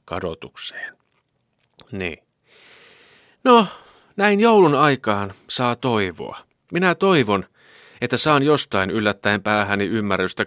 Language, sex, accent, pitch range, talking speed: Finnish, male, native, 90-135 Hz, 85 wpm